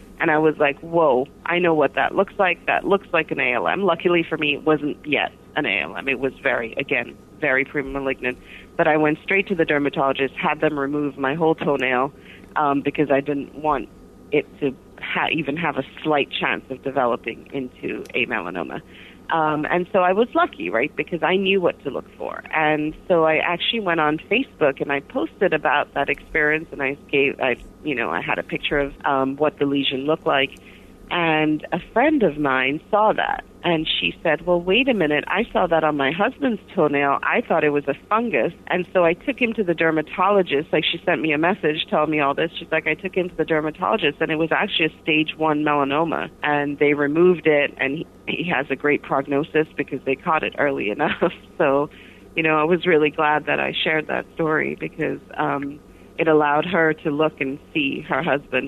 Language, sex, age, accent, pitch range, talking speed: English, female, 30-49, American, 140-170 Hz, 210 wpm